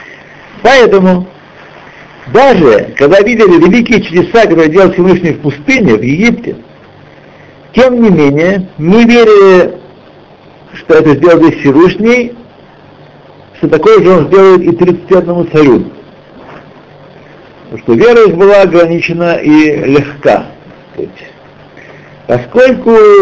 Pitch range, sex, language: 140-200 Hz, male, Russian